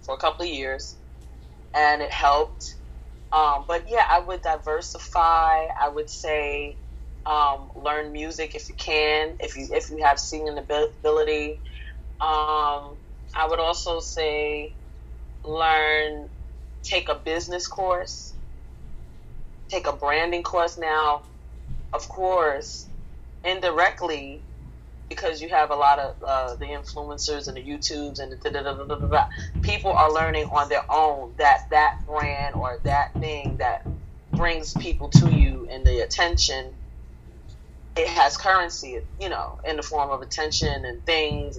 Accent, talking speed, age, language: American, 135 wpm, 20-39, English